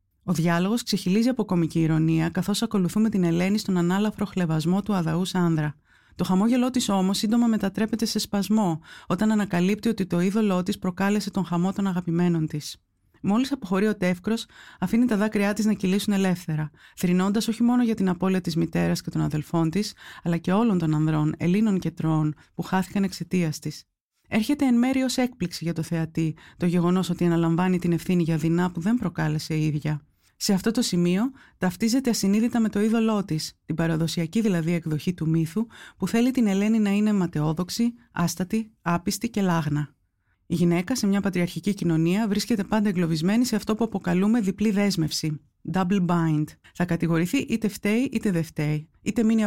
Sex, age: female, 30-49